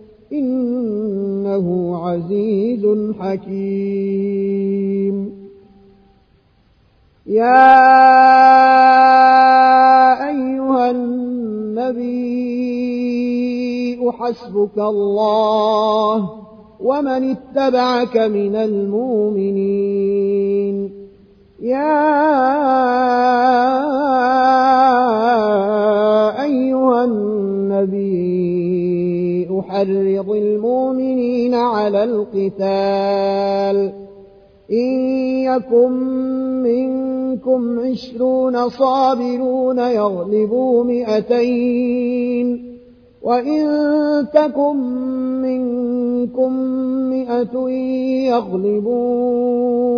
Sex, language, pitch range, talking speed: male, Arabic, 200-260 Hz, 35 wpm